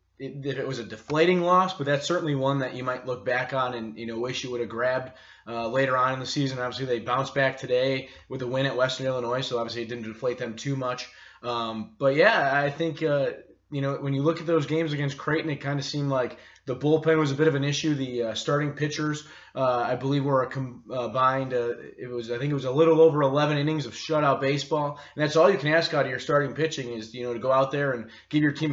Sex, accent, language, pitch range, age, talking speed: male, American, English, 125-150 Hz, 20-39, 265 wpm